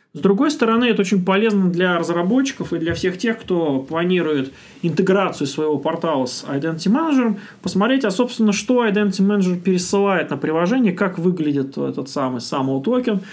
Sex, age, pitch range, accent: male, 30-49, 160-215 Hz, native